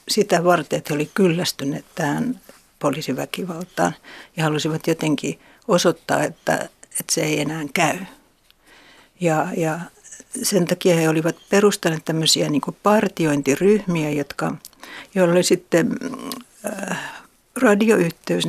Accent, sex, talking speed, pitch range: native, female, 110 wpm, 160-200 Hz